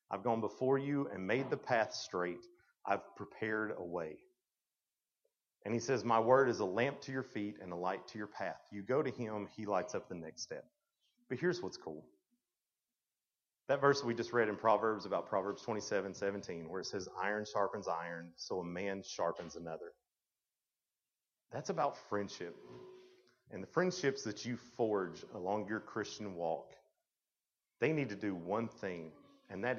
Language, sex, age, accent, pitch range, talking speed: English, male, 40-59, American, 105-140 Hz, 175 wpm